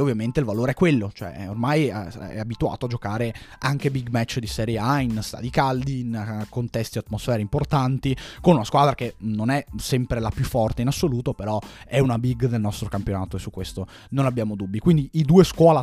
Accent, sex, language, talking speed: native, male, Italian, 205 wpm